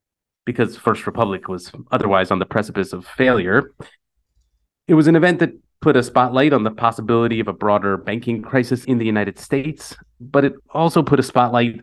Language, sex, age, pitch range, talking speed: English, male, 30-49, 105-145 Hz, 185 wpm